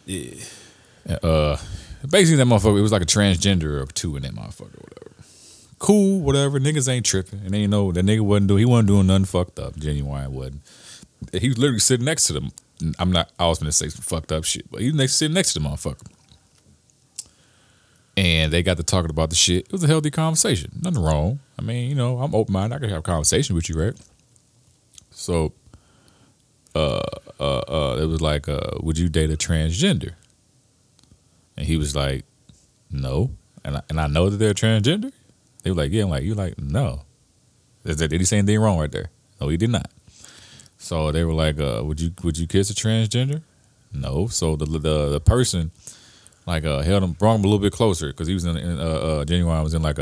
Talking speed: 215 wpm